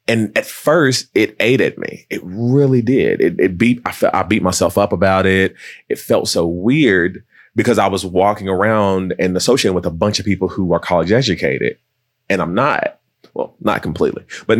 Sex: male